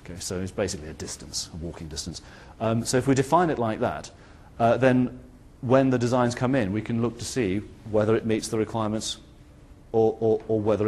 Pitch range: 100-130 Hz